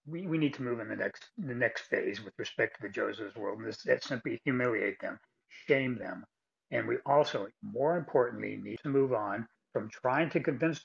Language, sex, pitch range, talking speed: English, male, 135-180 Hz, 210 wpm